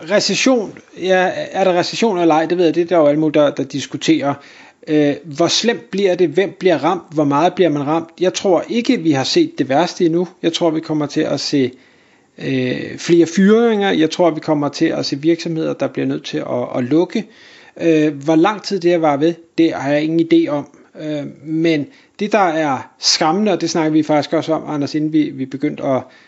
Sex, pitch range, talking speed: male, 155-185 Hz, 225 wpm